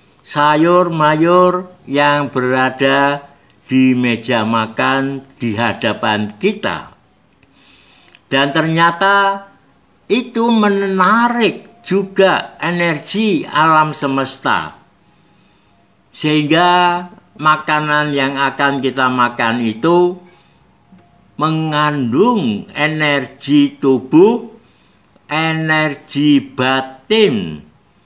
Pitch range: 130-175 Hz